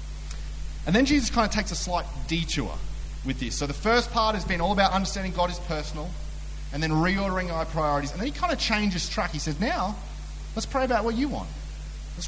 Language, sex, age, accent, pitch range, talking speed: English, male, 30-49, Australian, 130-195 Hz, 220 wpm